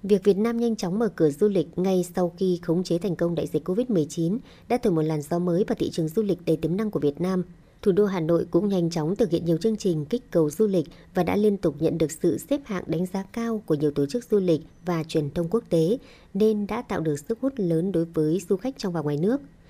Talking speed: 275 wpm